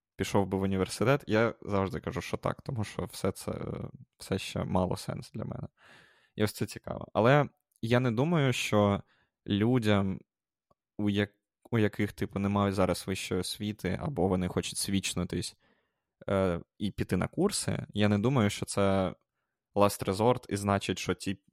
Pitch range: 95-110 Hz